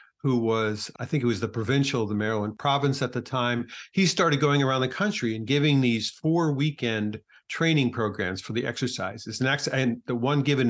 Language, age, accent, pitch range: English, 50-69, American, 110-135 Hz